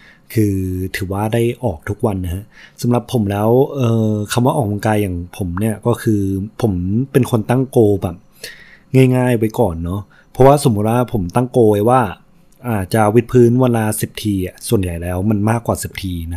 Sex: male